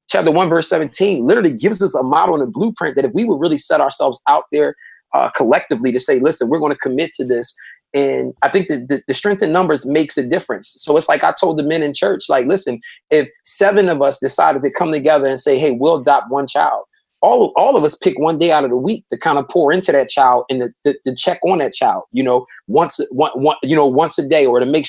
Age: 30-49